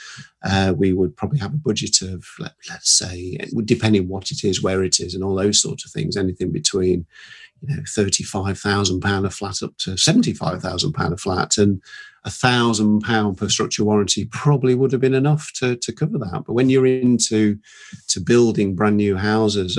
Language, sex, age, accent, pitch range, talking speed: English, male, 50-69, British, 100-115 Hz, 195 wpm